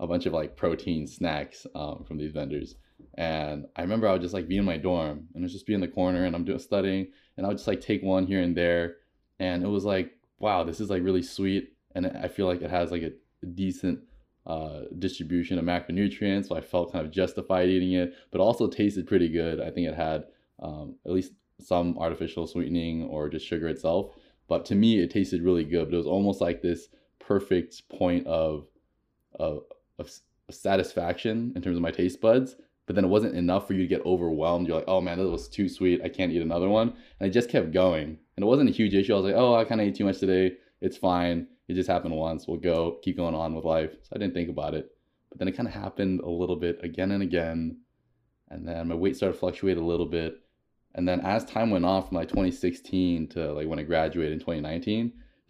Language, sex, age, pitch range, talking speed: English, male, 20-39, 85-95 Hz, 235 wpm